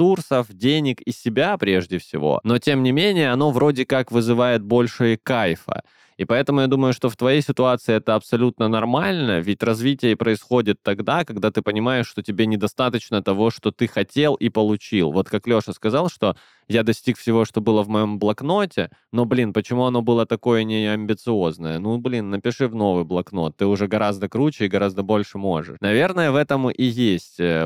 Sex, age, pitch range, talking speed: male, 20-39, 95-120 Hz, 180 wpm